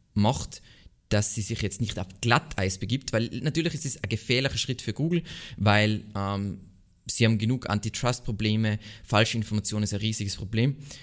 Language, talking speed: German, 165 wpm